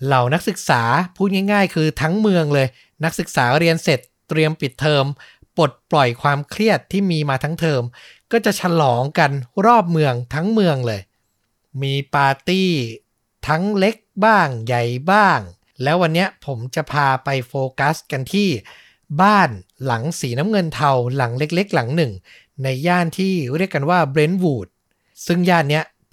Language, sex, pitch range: Thai, male, 130-175 Hz